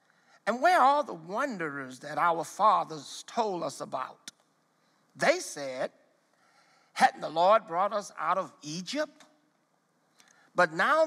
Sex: male